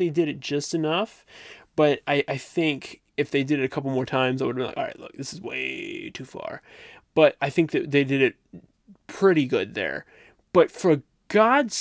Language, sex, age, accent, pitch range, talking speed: English, male, 20-39, American, 145-225 Hz, 210 wpm